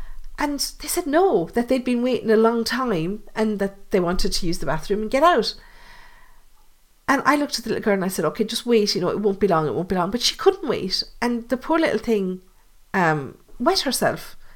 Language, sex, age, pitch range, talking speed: English, female, 50-69, 195-270 Hz, 235 wpm